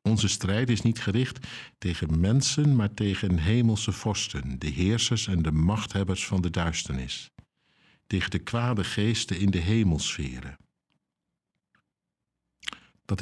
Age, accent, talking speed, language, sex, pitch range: 60-79, Dutch, 125 wpm, Dutch, male, 90-115 Hz